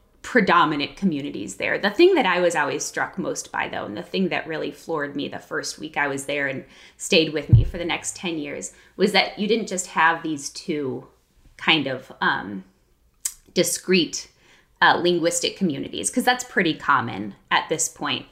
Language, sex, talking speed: English, female, 185 wpm